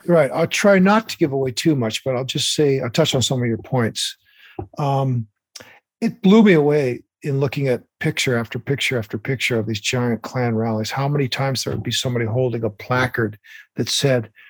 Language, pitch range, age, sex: English, 125-155 Hz, 50-69, male